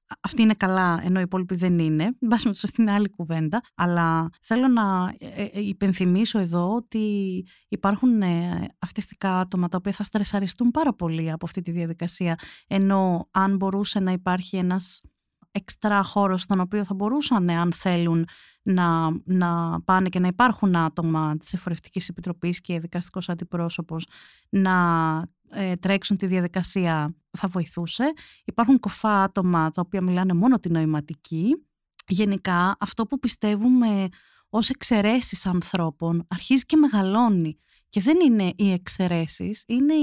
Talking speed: 135 wpm